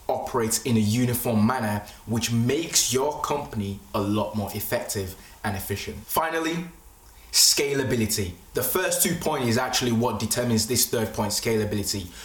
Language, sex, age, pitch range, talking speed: English, male, 20-39, 105-135 Hz, 140 wpm